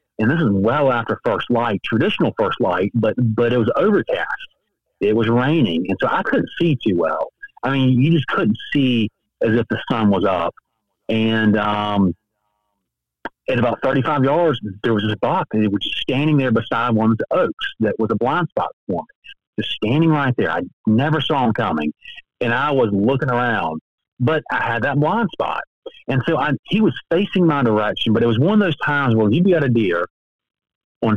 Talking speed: 205 wpm